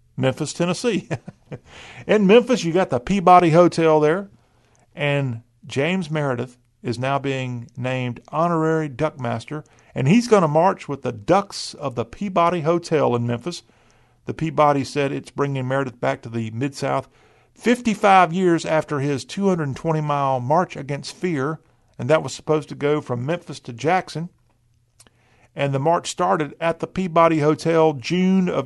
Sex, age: male, 50-69